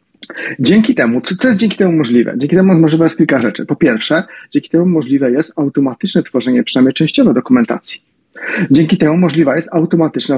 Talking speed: 170 wpm